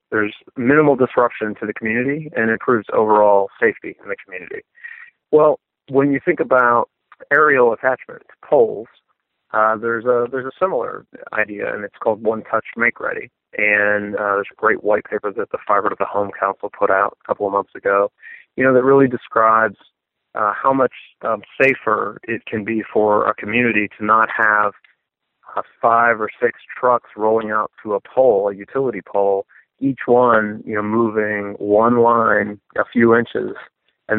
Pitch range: 105-120 Hz